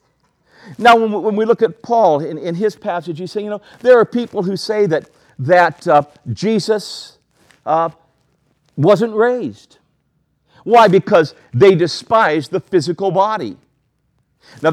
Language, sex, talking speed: English, male, 140 wpm